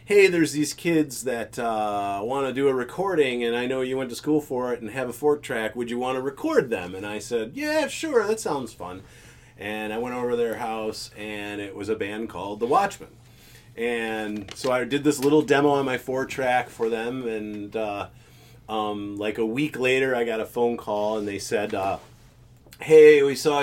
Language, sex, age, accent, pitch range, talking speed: English, male, 30-49, American, 110-135 Hz, 210 wpm